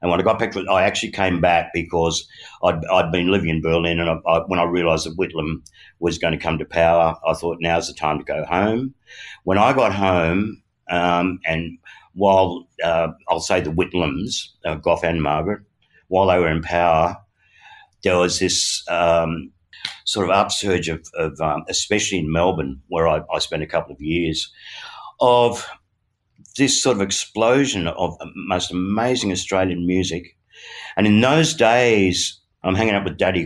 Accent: Australian